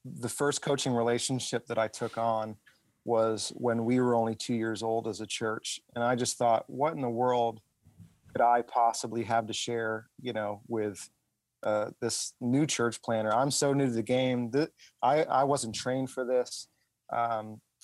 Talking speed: 180 wpm